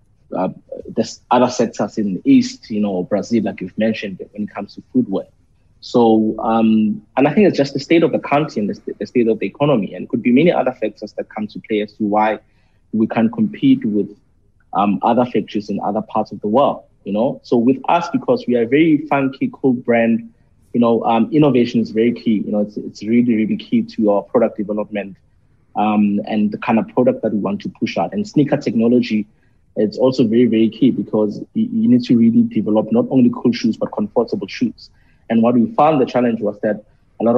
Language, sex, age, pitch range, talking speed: English, male, 20-39, 105-135 Hz, 220 wpm